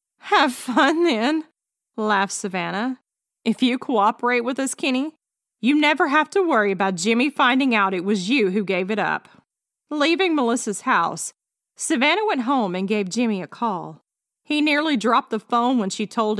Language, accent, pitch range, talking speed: English, American, 195-255 Hz, 170 wpm